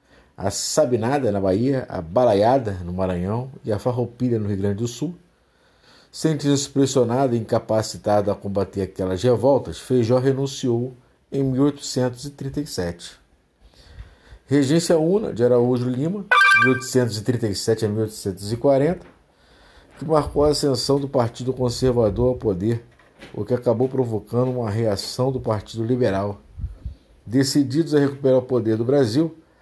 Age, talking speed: 50-69, 125 wpm